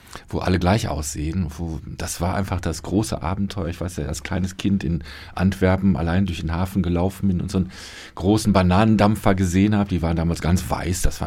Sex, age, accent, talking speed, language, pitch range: male, 40-59, German, 210 wpm, German, 85-100 Hz